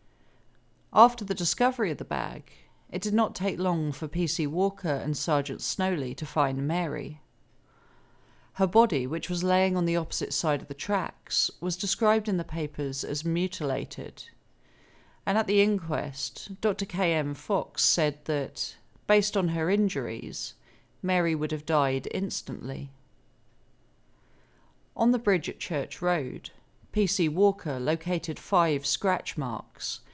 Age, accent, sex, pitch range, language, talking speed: 40-59, British, female, 145-185 Hz, English, 135 wpm